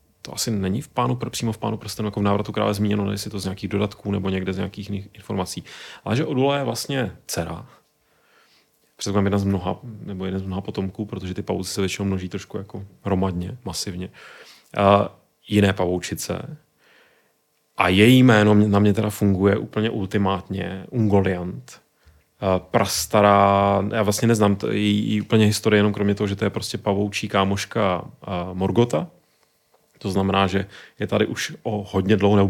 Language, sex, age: Czech, male, 30-49